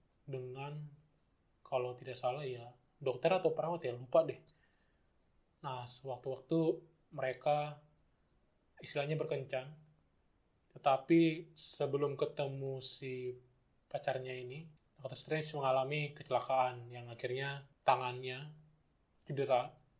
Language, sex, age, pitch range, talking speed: Indonesian, male, 20-39, 130-155 Hz, 90 wpm